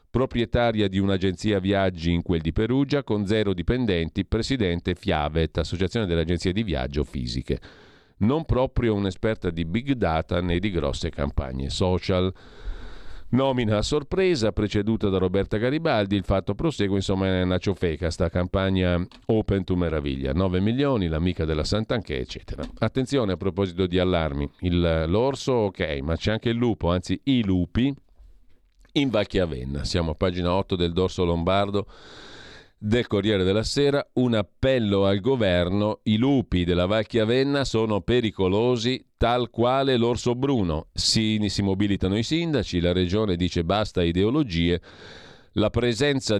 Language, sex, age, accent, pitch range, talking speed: Italian, male, 50-69, native, 90-115 Hz, 140 wpm